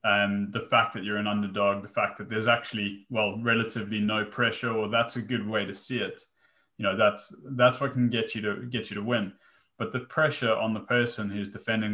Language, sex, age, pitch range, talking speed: English, male, 20-39, 100-115 Hz, 225 wpm